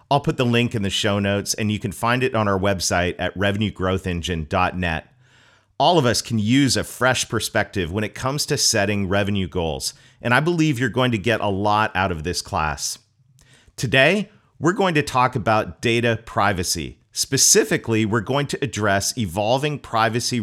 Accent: American